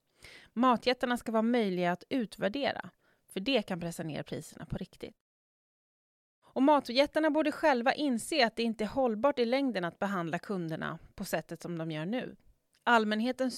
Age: 30-49